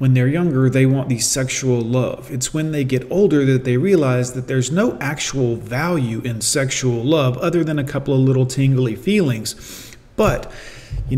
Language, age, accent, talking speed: English, 40-59, American, 185 wpm